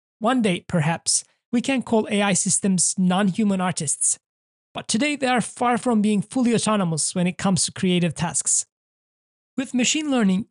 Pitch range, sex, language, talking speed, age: 175-225 Hz, male, English, 160 wpm, 20-39